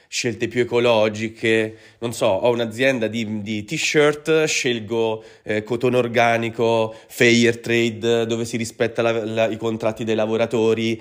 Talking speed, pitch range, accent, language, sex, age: 125 wpm, 110-140 Hz, native, Italian, male, 30-49